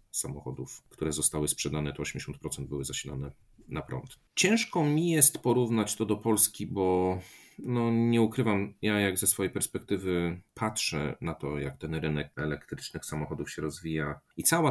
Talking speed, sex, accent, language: 150 wpm, male, native, Polish